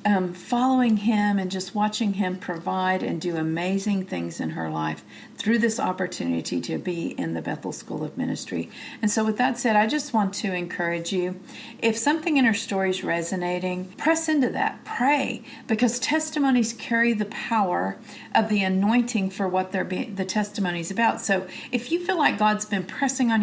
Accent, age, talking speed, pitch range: American, 50-69, 180 wpm, 185-230 Hz